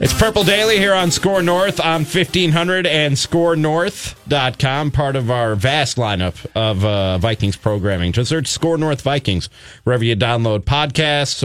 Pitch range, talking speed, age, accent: 120-160 Hz, 150 wpm, 30-49, American